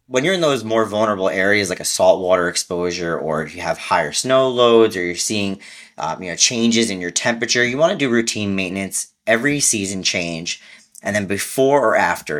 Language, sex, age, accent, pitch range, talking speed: English, male, 30-49, American, 100-125 Hz, 205 wpm